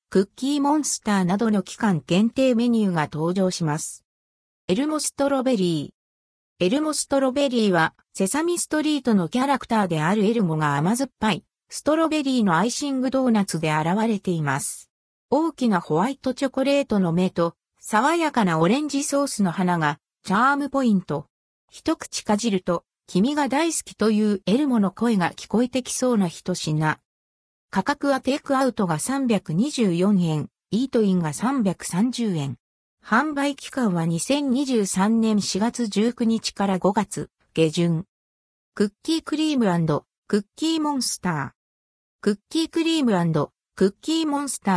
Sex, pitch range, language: female, 175-265 Hz, Japanese